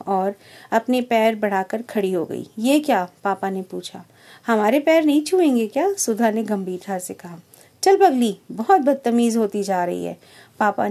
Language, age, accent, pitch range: Hindi, 50-69, native, 185-235 Hz